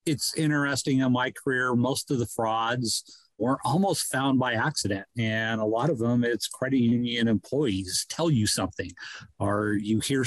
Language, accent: English, American